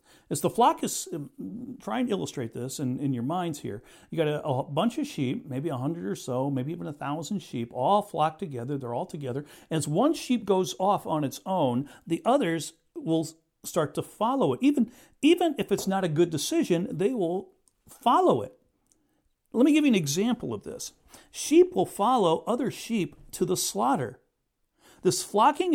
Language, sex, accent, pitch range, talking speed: English, male, American, 155-235 Hz, 190 wpm